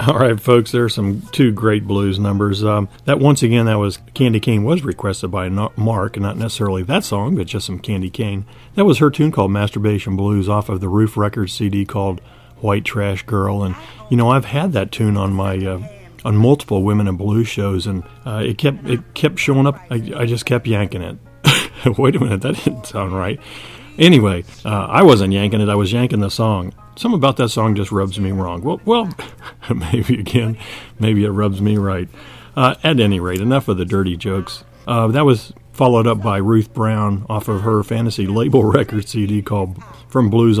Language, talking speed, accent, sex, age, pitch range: English, 205 wpm, American, male, 40-59, 100-125 Hz